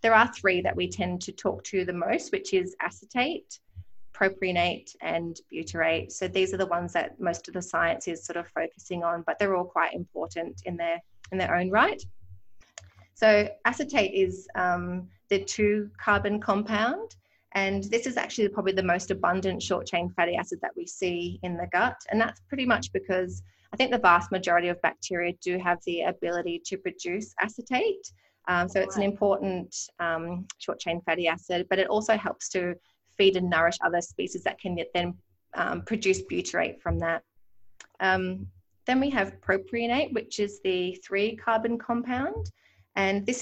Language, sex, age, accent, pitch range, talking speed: English, female, 30-49, Australian, 170-210 Hz, 175 wpm